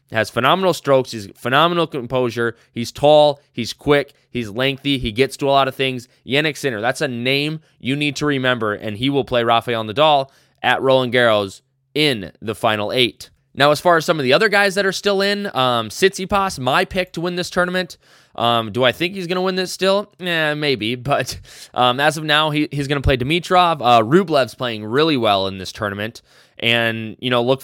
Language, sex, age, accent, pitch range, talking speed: English, male, 20-39, American, 110-145 Hz, 210 wpm